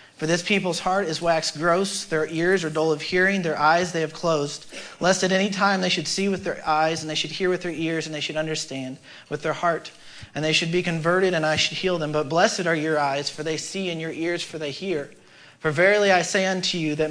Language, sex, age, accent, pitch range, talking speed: English, male, 40-59, American, 155-185 Hz, 255 wpm